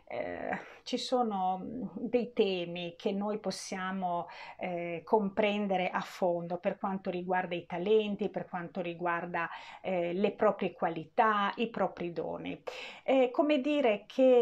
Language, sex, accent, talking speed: Italian, female, native, 130 wpm